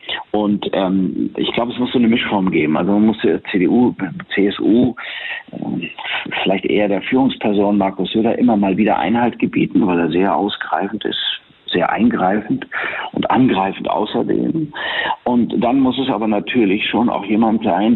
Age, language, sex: 50-69, German, male